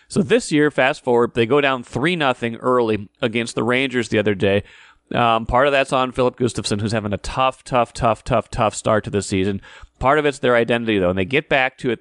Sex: male